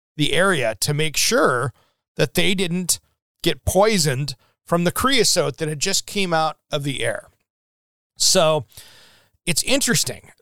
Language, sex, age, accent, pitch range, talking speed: English, male, 40-59, American, 145-185 Hz, 140 wpm